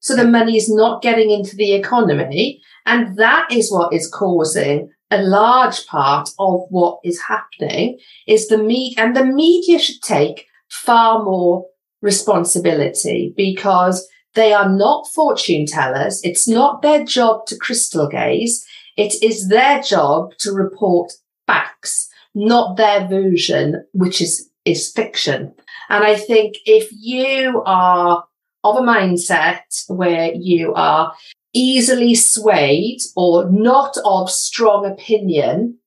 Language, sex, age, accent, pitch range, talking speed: English, female, 50-69, British, 175-225 Hz, 130 wpm